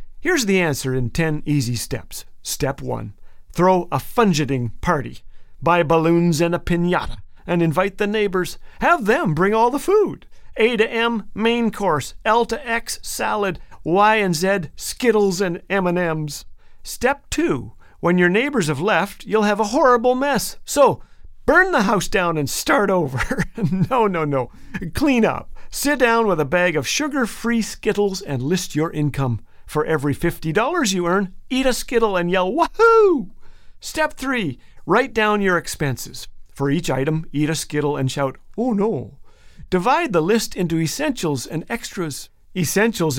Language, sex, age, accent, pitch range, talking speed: English, male, 50-69, American, 150-220 Hz, 160 wpm